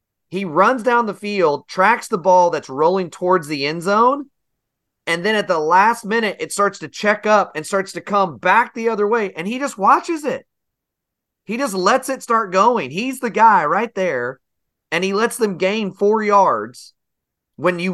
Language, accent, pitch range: English, American, 145-200 Hz